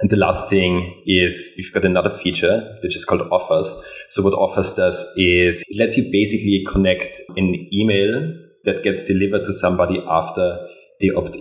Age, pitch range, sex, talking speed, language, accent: 30-49, 85-100 Hz, male, 175 wpm, English, German